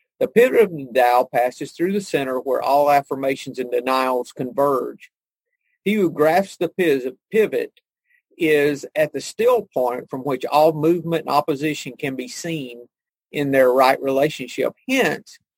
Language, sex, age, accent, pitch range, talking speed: English, male, 50-69, American, 135-170 Hz, 150 wpm